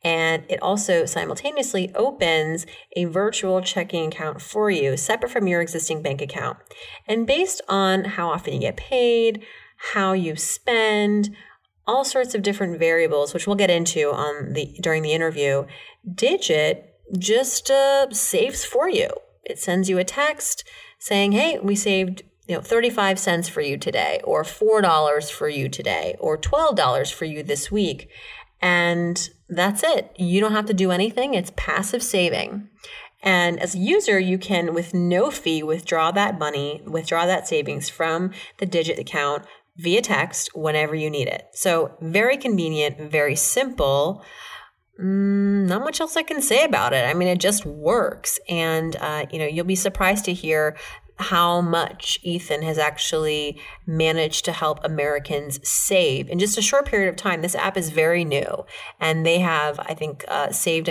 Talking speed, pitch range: 160 wpm, 155-210 Hz